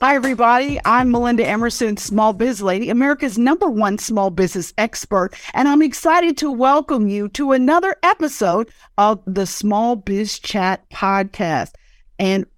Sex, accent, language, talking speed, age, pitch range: female, American, English, 145 wpm, 50-69, 200-275 Hz